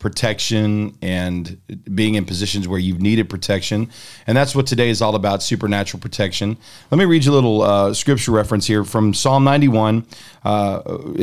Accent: American